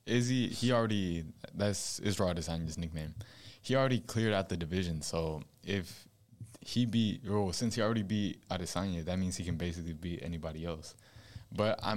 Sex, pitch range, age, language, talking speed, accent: male, 85-110 Hz, 20-39, English, 175 wpm, American